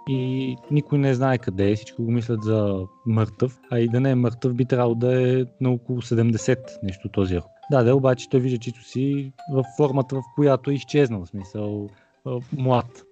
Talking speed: 195 wpm